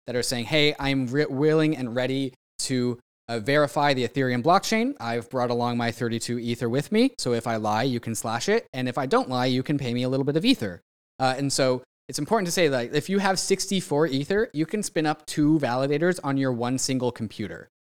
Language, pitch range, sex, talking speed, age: English, 120-150 Hz, male, 230 wpm, 20-39